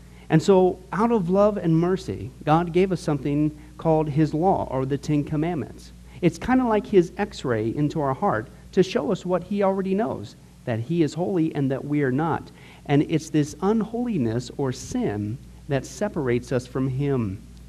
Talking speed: 185 wpm